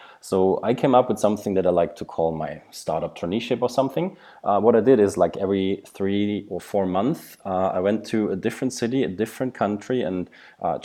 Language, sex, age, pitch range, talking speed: English, male, 20-39, 90-115 Hz, 215 wpm